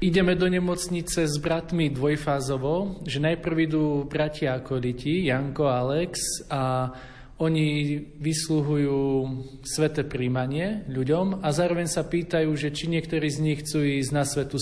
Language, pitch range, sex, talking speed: Slovak, 135-160 Hz, male, 140 wpm